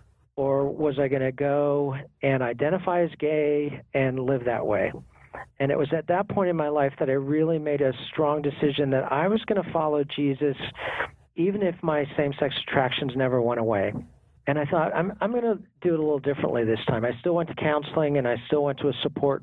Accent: American